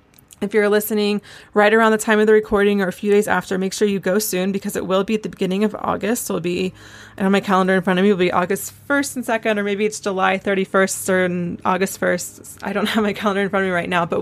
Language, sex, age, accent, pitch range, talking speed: English, female, 20-39, American, 180-215 Hz, 270 wpm